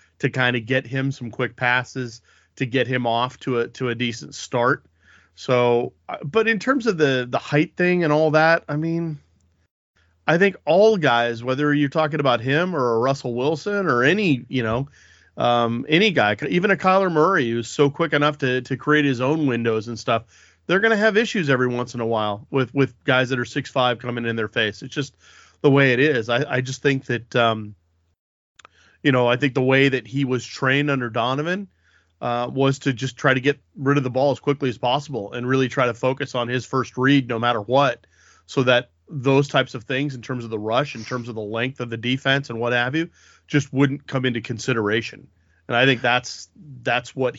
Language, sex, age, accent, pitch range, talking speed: English, male, 30-49, American, 120-140 Hz, 220 wpm